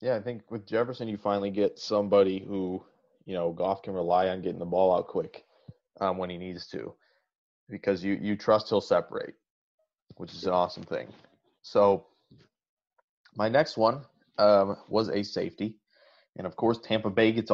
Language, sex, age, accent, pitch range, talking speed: English, male, 30-49, American, 95-110 Hz, 175 wpm